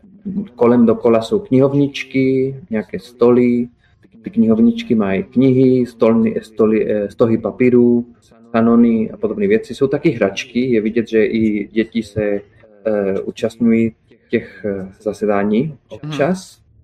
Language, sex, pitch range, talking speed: Czech, male, 105-130 Hz, 110 wpm